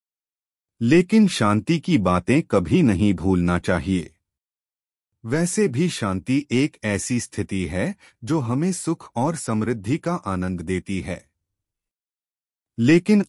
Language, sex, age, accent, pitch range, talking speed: Hindi, male, 30-49, native, 95-145 Hz, 115 wpm